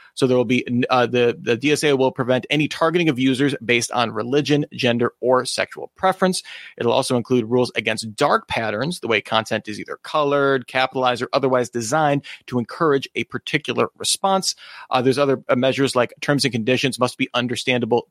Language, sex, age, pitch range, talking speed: English, male, 30-49, 120-150 Hz, 180 wpm